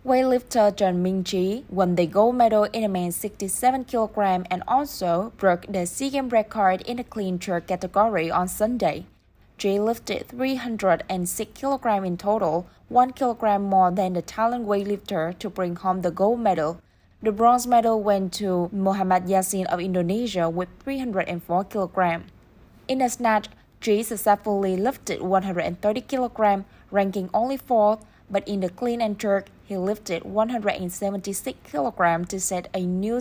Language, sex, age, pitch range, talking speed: Vietnamese, female, 20-39, 185-225 Hz, 140 wpm